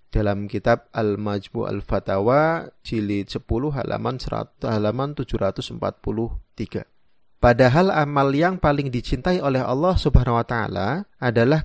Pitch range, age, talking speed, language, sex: 110-140 Hz, 30-49, 120 wpm, Indonesian, male